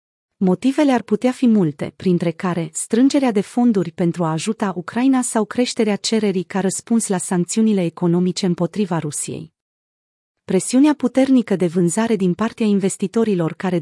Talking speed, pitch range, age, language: 140 wpm, 180-225 Hz, 30-49, Romanian